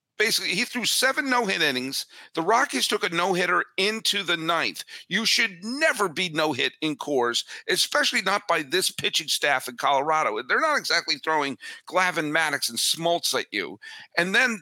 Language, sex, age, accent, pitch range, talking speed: English, male, 50-69, American, 155-240 Hz, 170 wpm